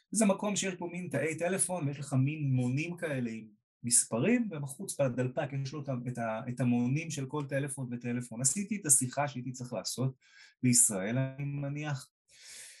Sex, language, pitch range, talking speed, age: male, Hebrew, 125-175 Hz, 155 wpm, 30-49